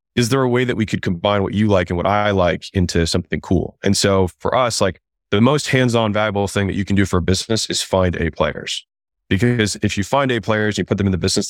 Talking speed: 265 wpm